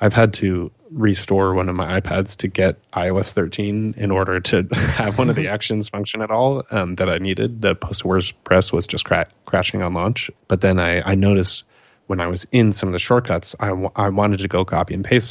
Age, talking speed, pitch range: 20-39, 230 wpm, 95-110 Hz